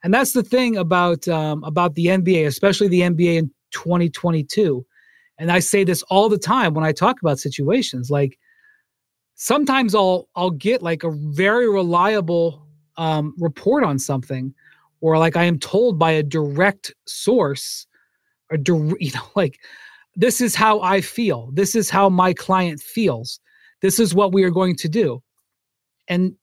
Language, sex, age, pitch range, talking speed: English, male, 30-49, 165-220 Hz, 165 wpm